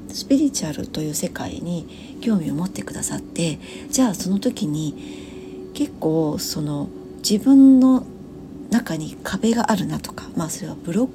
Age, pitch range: 40-59, 175-250 Hz